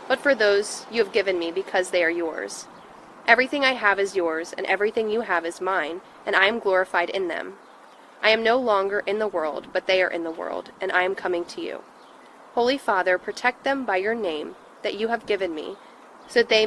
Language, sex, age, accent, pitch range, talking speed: English, female, 20-39, American, 185-230 Hz, 225 wpm